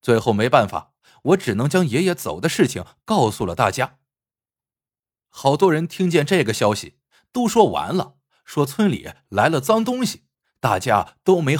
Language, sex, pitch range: Chinese, male, 115-185 Hz